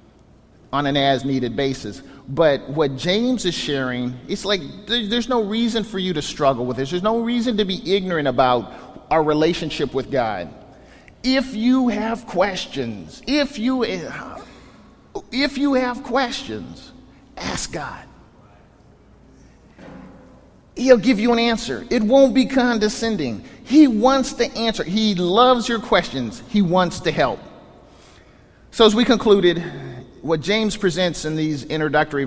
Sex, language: male, English